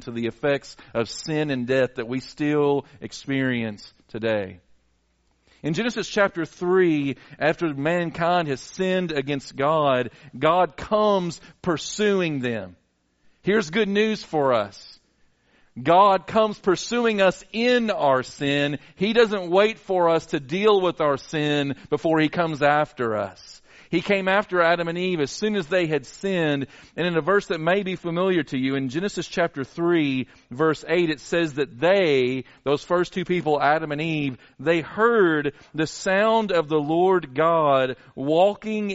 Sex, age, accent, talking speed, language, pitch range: male, 40-59, American, 155 wpm, English, 130-180 Hz